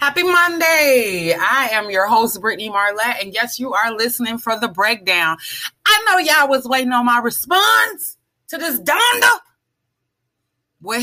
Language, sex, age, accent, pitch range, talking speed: English, female, 30-49, American, 160-255 Hz, 150 wpm